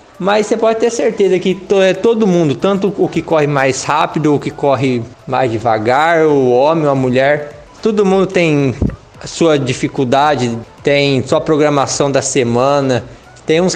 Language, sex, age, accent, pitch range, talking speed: Portuguese, male, 20-39, Brazilian, 140-185 Hz, 160 wpm